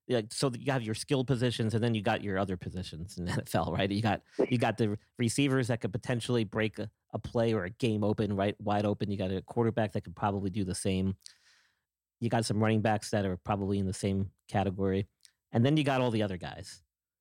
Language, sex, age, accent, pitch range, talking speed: English, male, 40-59, American, 100-125 Hz, 235 wpm